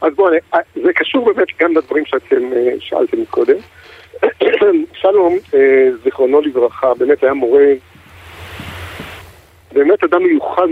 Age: 50-69